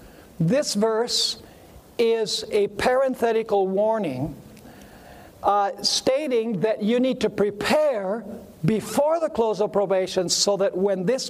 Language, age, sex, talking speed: English, 60-79, male, 115 wpm